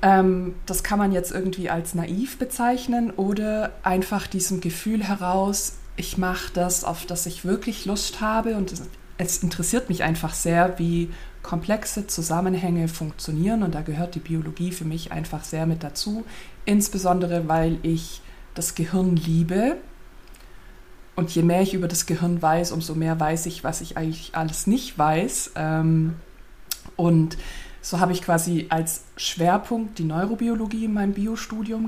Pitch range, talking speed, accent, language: 170-200 Hz, 150 wpm, German, German